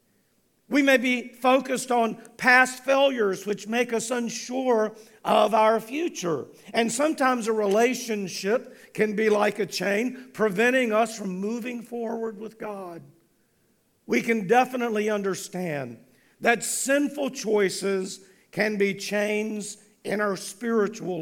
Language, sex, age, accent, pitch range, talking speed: English, male, 50-69, American, 195-245 Hz, 120 wpm